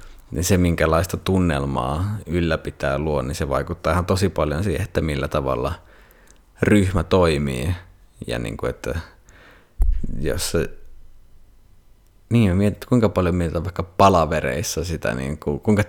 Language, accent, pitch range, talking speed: Finnish, native, 80-95 Hz, 120 wpm